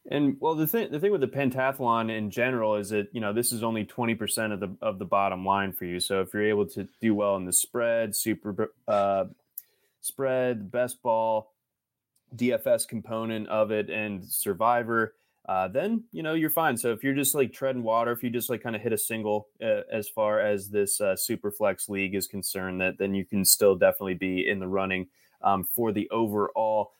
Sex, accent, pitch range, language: male, American, 105-140 Hz, English